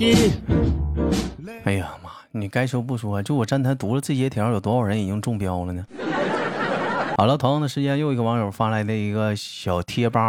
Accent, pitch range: native, 100-145 Hz